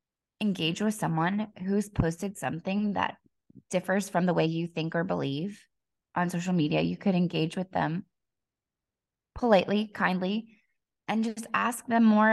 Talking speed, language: 145 wpm, English